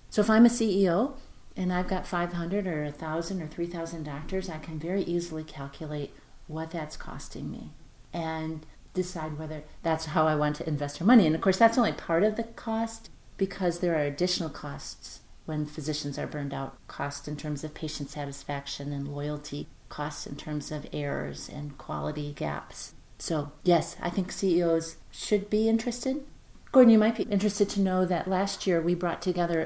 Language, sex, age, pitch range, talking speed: English, female, 40-59, 150-180 Hz, 180 wpm